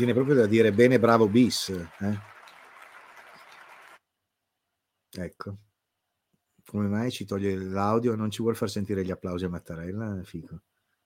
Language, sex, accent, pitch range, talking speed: Italian, male, native, 95-125 Hz, 125 wpm